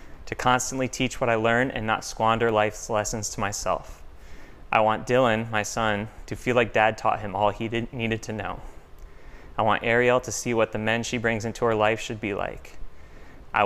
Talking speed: 200 wpm